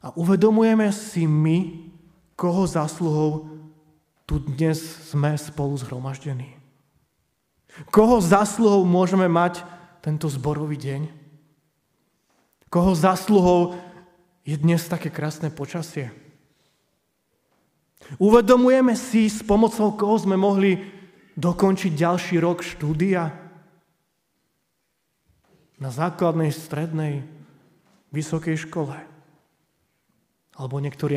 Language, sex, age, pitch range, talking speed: Slovak, male, 30-49, 150-185 Hz, 85 wpm